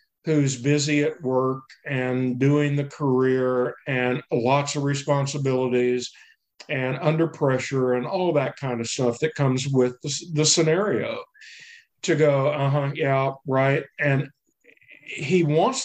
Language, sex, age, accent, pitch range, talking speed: English, male, 50-69, American, 130-160 Hz, 135 wpm